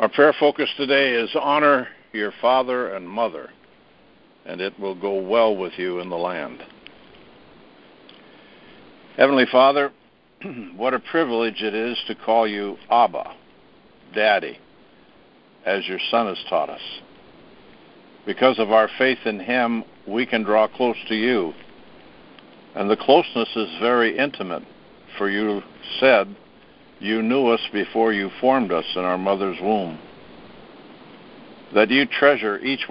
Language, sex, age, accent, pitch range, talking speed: English, male, 60-79, American, 100-130 Hz, 135 wpm